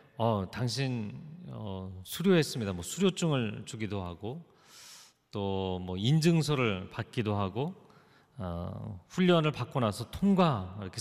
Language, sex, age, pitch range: Korean, male, 40-59, 115-175 Hz